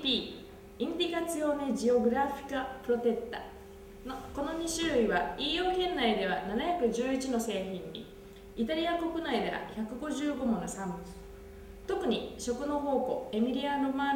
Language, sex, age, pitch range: Japanese, female, 20-39, 200-295 Hz